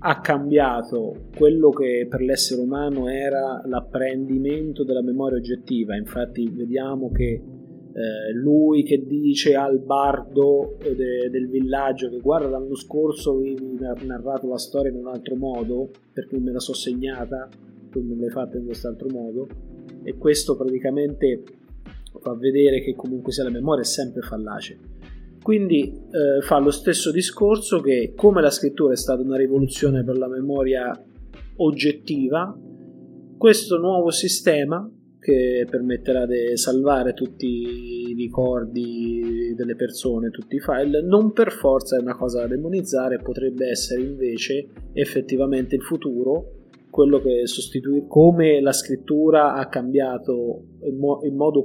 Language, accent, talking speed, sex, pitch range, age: Italian, native, 140 wpm, male, 125-145 Hz, 30-49